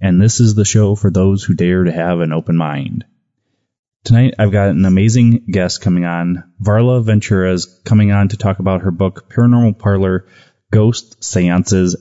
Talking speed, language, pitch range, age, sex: 180 wpm, English, 90-110 Hz, 20-39, male